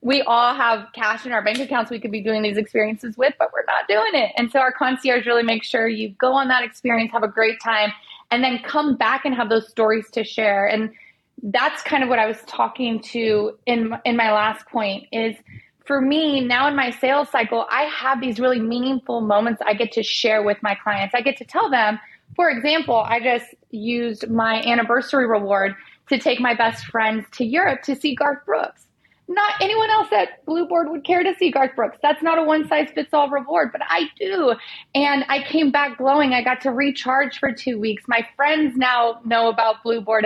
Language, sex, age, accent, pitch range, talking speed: English, female, 20-39, American, 220-275 Hz, 210 wpm